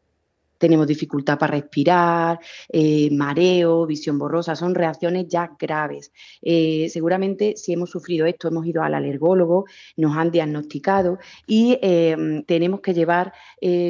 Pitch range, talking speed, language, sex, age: 155-185 Hz, 135 wpm, Spanish, female, 30-49